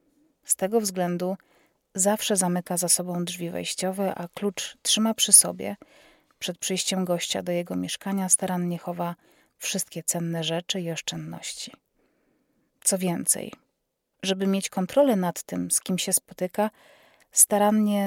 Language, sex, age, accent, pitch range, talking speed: Polish, female, 30-49, native, 175-215 Hz, 130 wpm